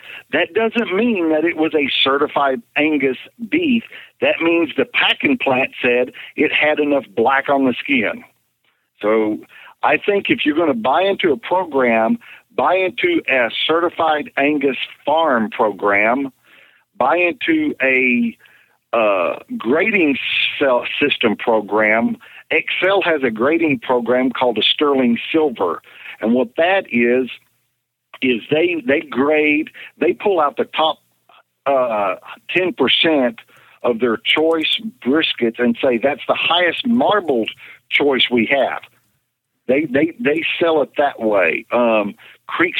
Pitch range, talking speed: 120-165 Hz, 130 wpm